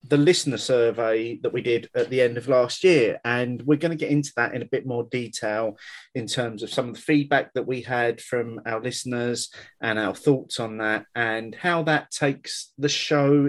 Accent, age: British, 30-49